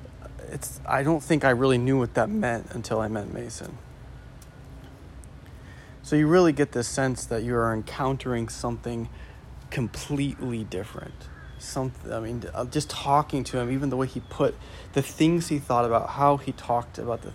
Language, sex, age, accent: English, male, 30-49, American